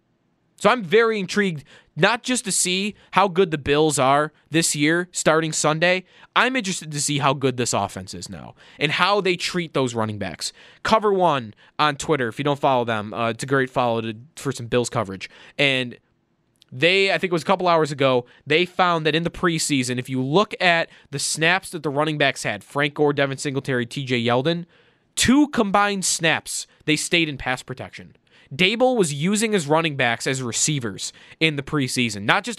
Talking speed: 195 wpm